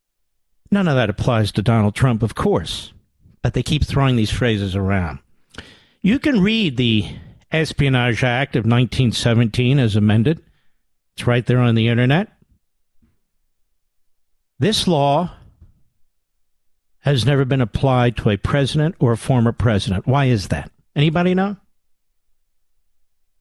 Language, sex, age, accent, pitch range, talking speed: English, male, 50-69, American, 105-145 Hz, 130 wpm